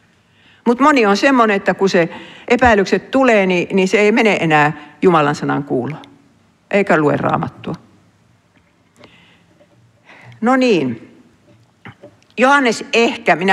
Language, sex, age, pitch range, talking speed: Finnish, female, 60-79, 165-235 Hz, 110 wpm